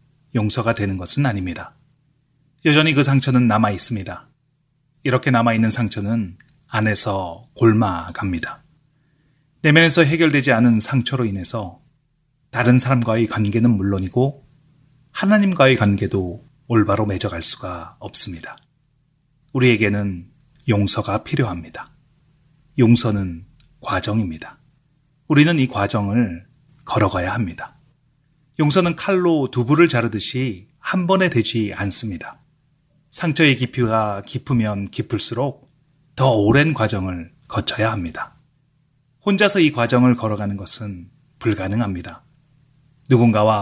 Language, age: Korean, 30-49